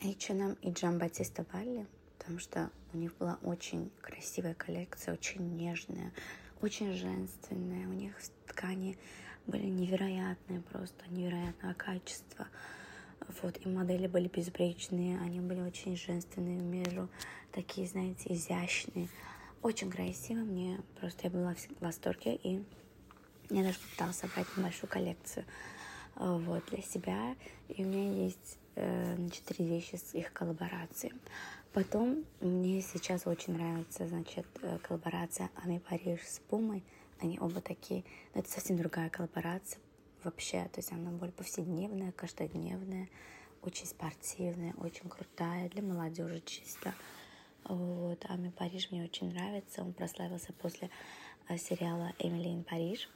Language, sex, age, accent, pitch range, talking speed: Russian, female, 20-39, native, 170-185 Hz, 125 wpm